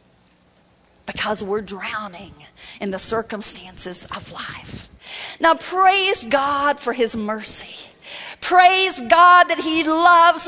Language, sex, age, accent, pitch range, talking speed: English, female, 40-59, American, 235-365 Hz, 110 wpm